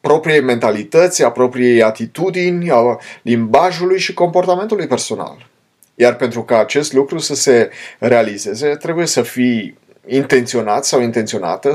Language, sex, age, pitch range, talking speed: Romanian, male, 30-49, 125-170 Hz, 115 wpm